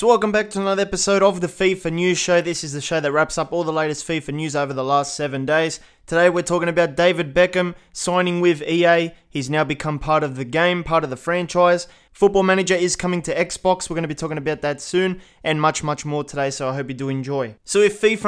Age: 20-39